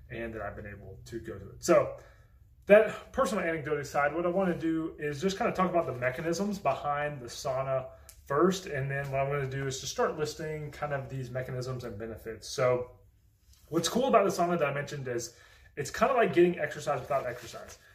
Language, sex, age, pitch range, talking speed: English, male, 20-39, 125-165 Hz, 220 wpm